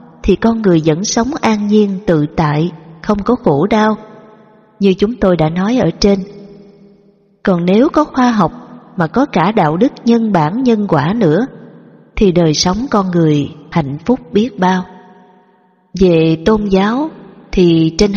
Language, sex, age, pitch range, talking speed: Vietnamese, female, 20-39, 160-210 Hz, 160 wpm